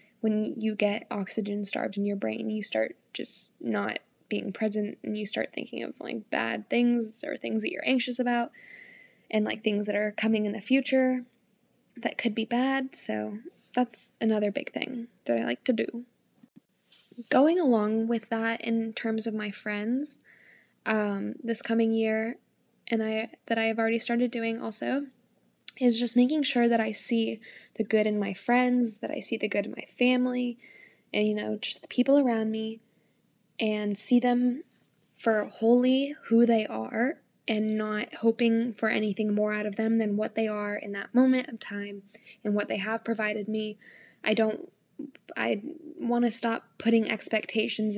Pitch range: 210-240 Hz